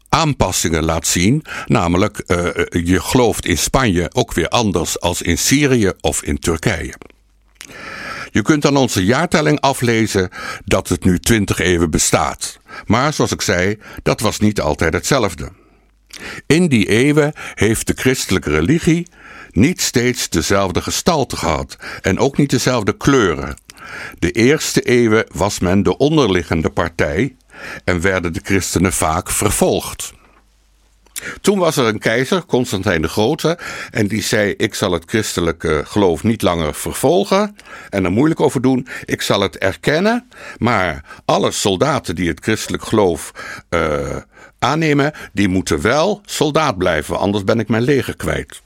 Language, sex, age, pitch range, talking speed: Dutch, male, 60-79, 90-135 Hz, 145 wpm